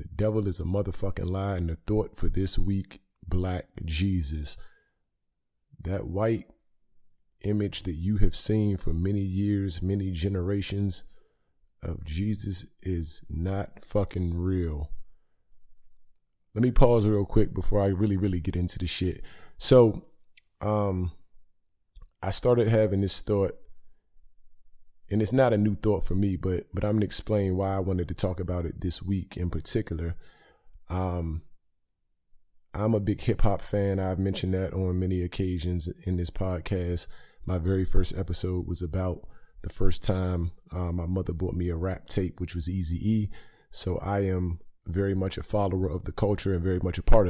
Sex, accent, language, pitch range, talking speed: male, American, English, 90-100 Hz, 160 wpm